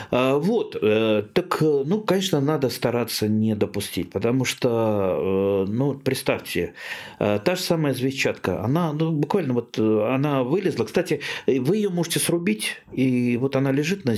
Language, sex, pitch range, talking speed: Russian, male, 110-150 Hz, 135 wpm